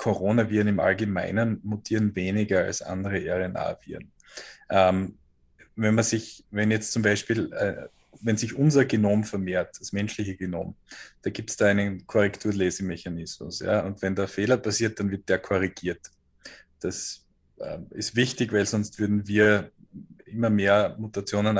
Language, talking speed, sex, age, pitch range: German, 145 wpm, male, 20-39, 95-110 Hz